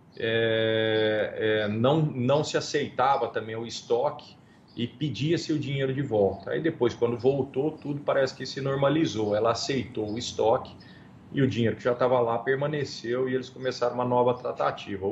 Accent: Brazilian